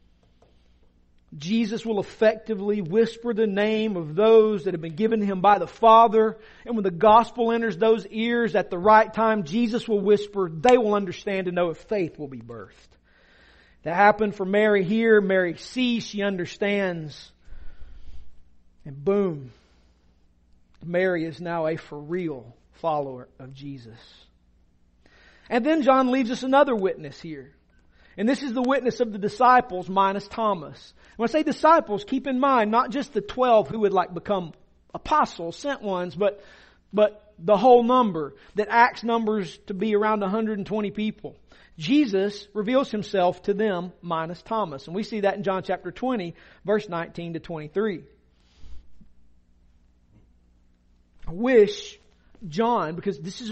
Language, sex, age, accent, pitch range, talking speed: English, male, 40-59, American, 155-220 Hz, 150 wpm